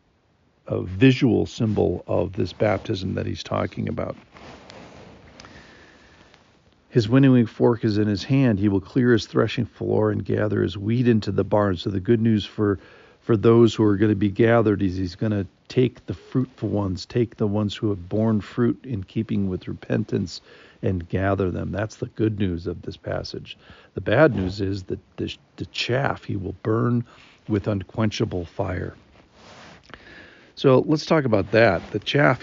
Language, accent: English, American